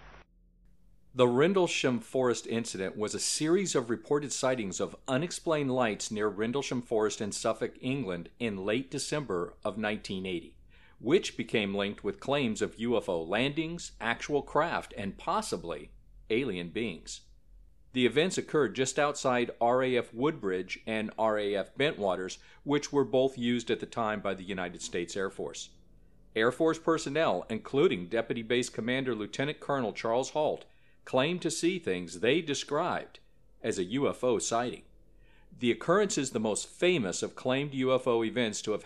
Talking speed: 145 wpm